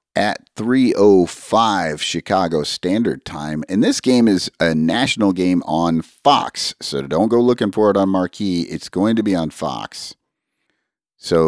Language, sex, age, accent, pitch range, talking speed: English, male, 40-59, American, 80-105 Hz, 150 wpm